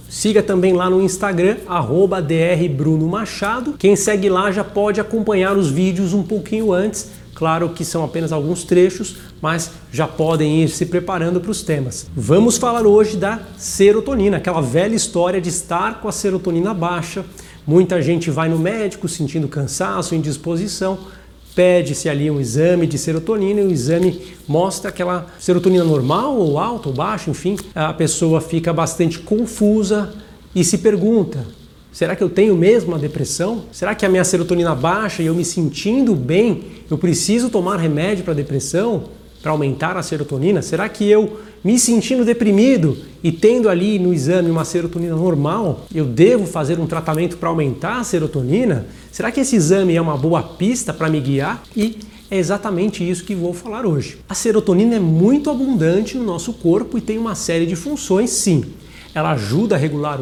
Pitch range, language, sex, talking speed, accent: 160-205 Hz, Portuguese, male, 170 wpm, Brazilian